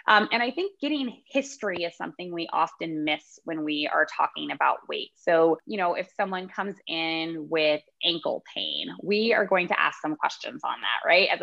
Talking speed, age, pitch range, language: 200 wpm, 20-39, 165-225 Hz, English